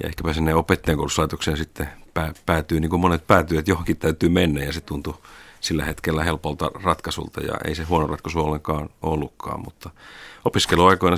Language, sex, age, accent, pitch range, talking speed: Finnish, male, 40-59, native, 75-85 Hz, 160 wpm